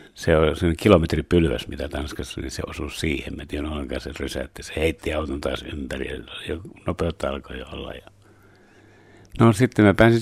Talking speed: 175 wpm